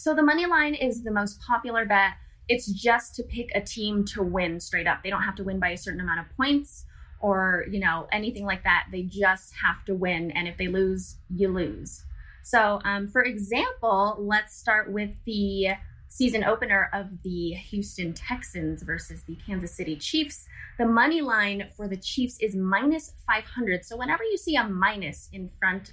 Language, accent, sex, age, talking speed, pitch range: English, American, female, 20-39, 190 wpm, 185-240 Hz